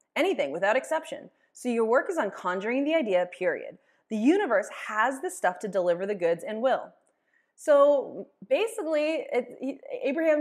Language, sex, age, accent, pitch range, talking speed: English, female, 20-39, American, 210-290 Hz, 150 wpm